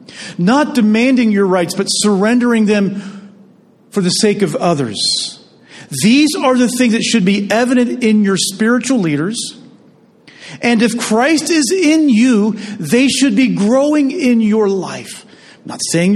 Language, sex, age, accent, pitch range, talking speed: English, male, 40-59, American, 170-230 Hz, 150 wpm